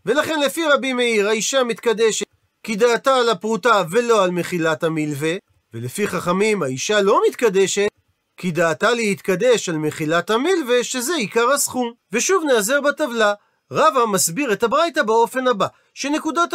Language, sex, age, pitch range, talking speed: Hebrew, male, 40-59, 180-265 Hz, 140 wpm